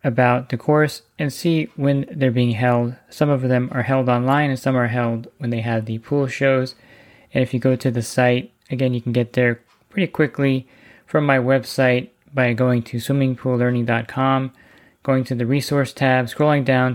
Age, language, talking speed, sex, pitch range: 20-39, English, 190 wpm, male, 120-135 Hz